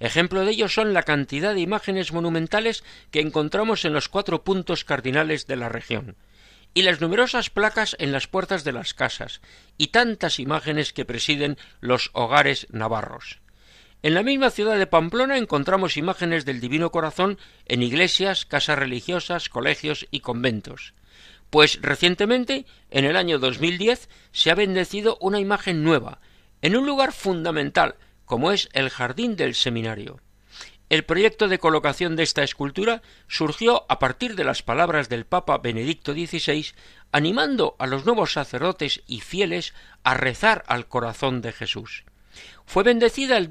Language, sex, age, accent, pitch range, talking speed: Spanish, male, 50-69, Spanish, 135-195 Hz, 150 wpm